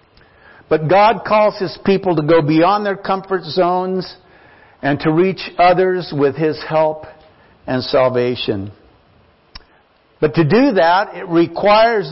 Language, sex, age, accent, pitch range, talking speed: English, male, 50-69, American, 155-195 Hz, 130 wpm